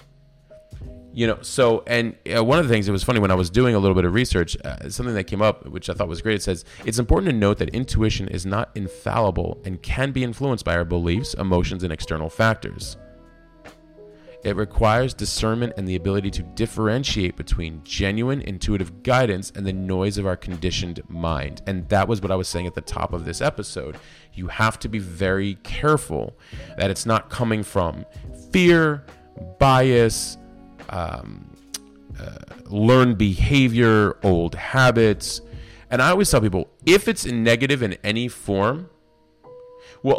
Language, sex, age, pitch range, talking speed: English, male, 30-49, 95-120 Hz, 175 wpm